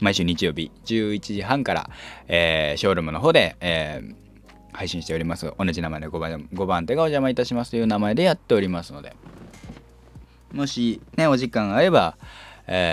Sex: male